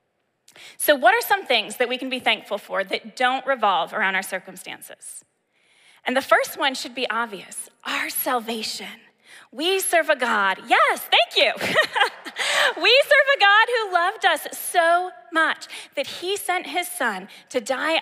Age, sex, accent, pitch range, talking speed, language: 30-49, female, American, 230-310 Hz, 165 wpm, English